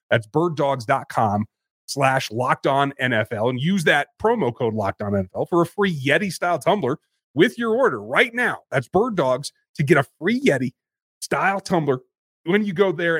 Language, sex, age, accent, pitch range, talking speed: English, male, 30-49, American, 125-170 Hz, 175 wpm